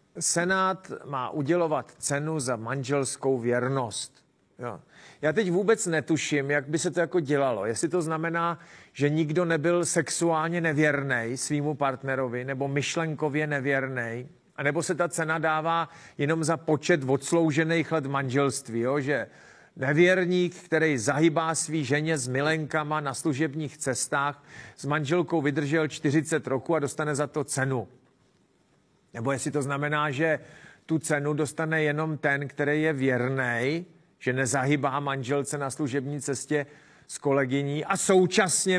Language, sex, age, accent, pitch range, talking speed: Czech, male, 40-59, native, 140-170 Hz, 135 wpm